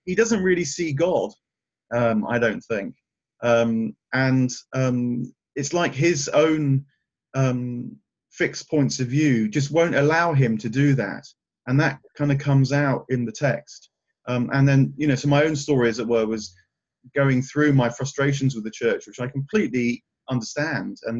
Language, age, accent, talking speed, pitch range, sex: English, 30-49, British, 175 wpm, 120-145 Hz, male